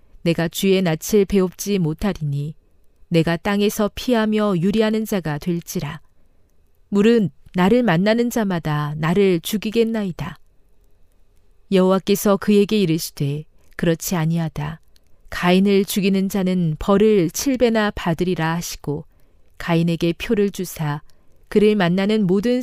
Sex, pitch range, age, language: female, 145-200 Hz, 40-59, Korean